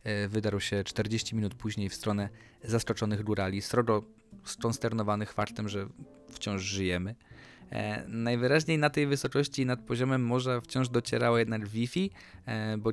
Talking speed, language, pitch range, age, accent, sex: 125 wpm, Polish, 105-130 Hz, 20-39, native, male